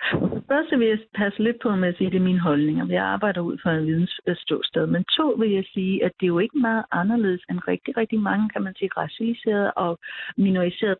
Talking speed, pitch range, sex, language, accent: 230 wpm, 185-230 Hz, female, Danish, native